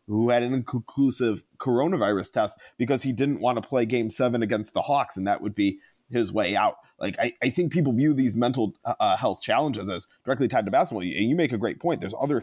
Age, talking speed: 30-49, 235 wpm